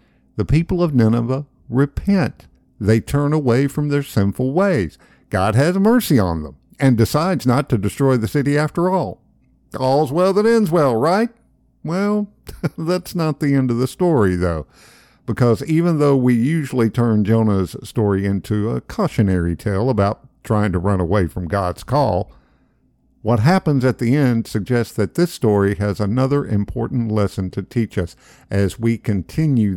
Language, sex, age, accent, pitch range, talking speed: English, male, 50-69, American, 95-140 Hz, 160 wpm